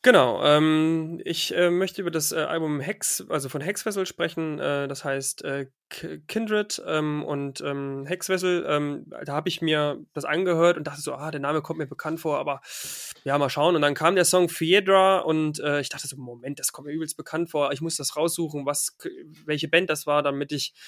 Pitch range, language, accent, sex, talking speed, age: 145-170 Hz, German, German, male, 210 wpm, 20-39